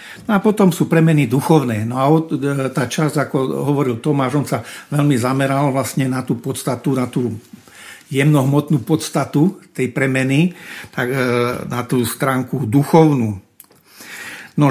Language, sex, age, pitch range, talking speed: Slovak, male, 50-69, 130-160 Hz, 135 wpm